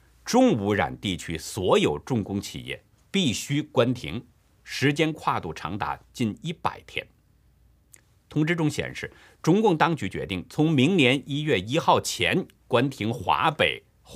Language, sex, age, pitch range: Chinese, male, 50-69, 105-150 Hz